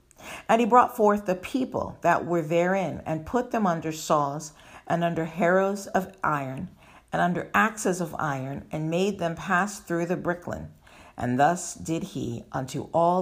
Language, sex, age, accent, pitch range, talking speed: English, female, 50-69, American, 140-185 Hz, 170 wpm